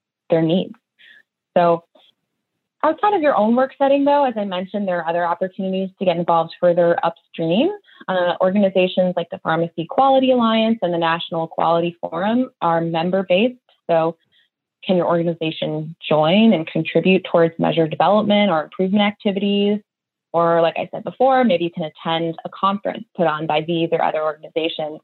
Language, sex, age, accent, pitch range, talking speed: English, female, 20-39, American, 165-200 Hz, 160 wpm